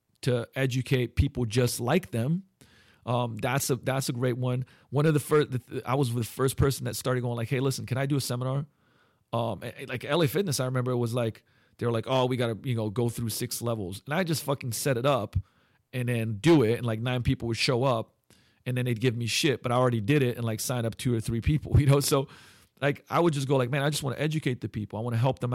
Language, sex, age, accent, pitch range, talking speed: English, male, 40-59, American, 115-145 Hz, 270 wpm